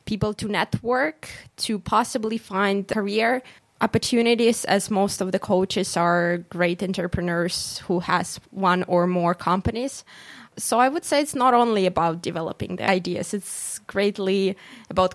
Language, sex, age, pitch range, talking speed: English, female, 20-39, 175-205 Hz, 145 wpm